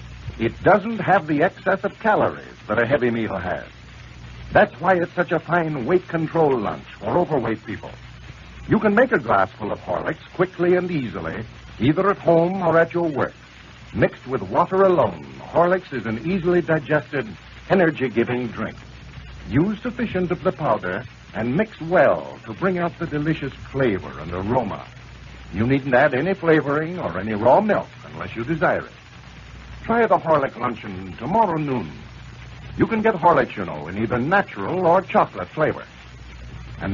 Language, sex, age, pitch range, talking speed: English, male, 60-79, 110-170 Hz, 160 wpm